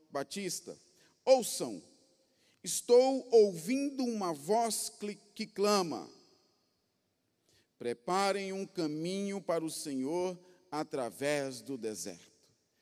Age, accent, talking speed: 40-59, Brazilian, 80 wpm